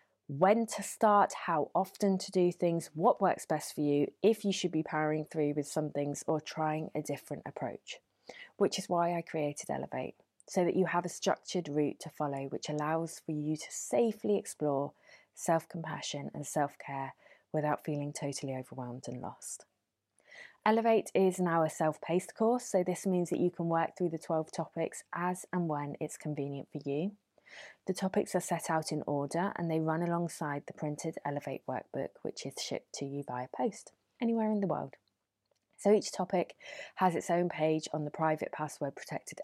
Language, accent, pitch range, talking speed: English, British, 150-190 Hz, 185 wpm